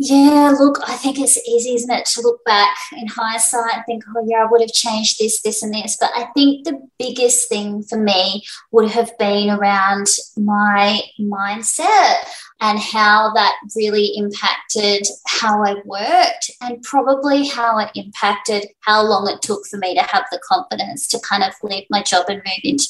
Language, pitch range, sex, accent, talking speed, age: English, 200-245 Hz, female, Australian, 185 wpm, 20-39